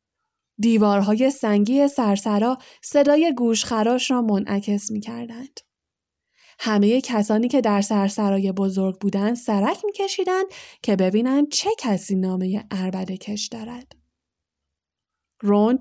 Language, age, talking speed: Persian, 10-29, 105 wpm